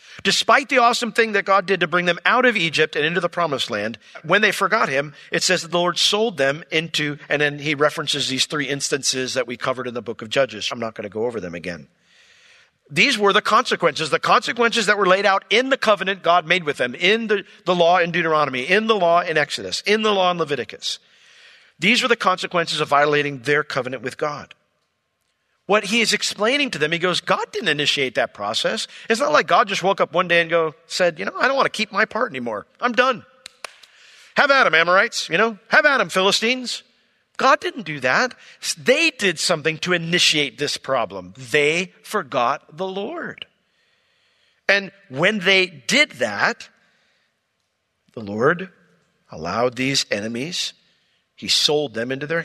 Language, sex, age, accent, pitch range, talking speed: English, male, 50-69, American, 150-210 Hz, 195 wpm